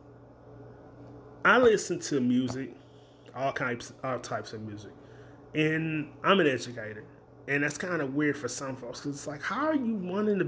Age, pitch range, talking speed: 30-49, 130-150 Hz, 165 wpm